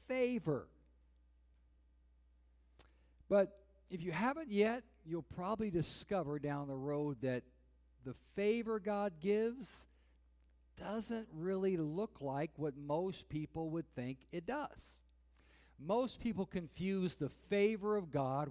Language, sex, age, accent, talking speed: English, male, 60-79, American, 115 wpm